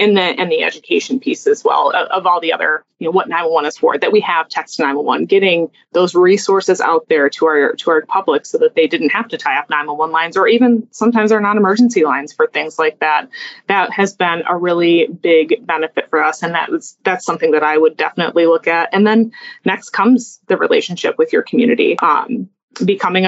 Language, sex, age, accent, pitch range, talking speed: English, female, 20-39, American, 170-245 Hz, 220 wpm